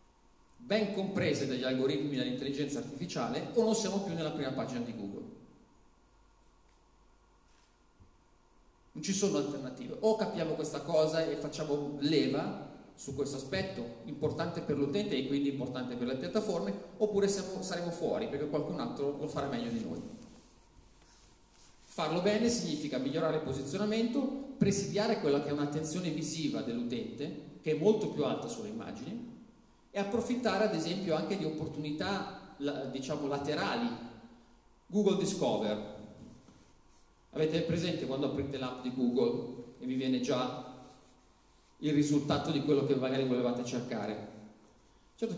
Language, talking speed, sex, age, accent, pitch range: Italian, 130 wpm, male, 40-59, native, 135-195 Hz